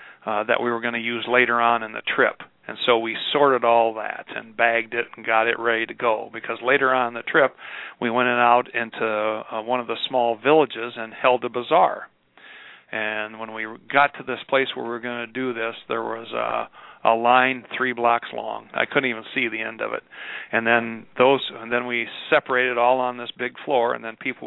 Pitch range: 115-125 Hz